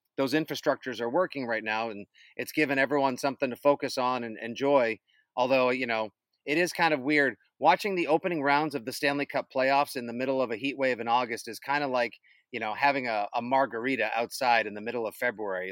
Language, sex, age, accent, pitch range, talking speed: English, male, 30-49, American, 120-150 Hz, 220 wpm